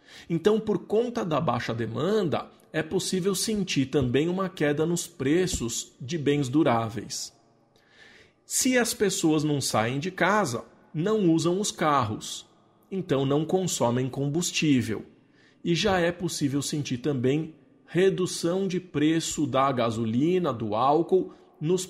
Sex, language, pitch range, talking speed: male, Portuguese, 125-175 Hz, 125 wpm